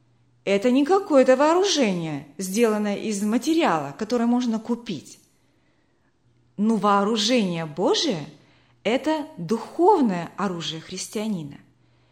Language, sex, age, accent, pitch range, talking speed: Russian, female, 30-49, native, 170-265 Hz, 85 wpm